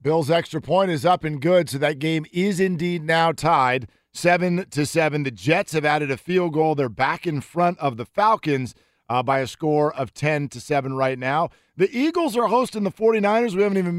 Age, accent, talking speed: 40-59, American, 195 wpm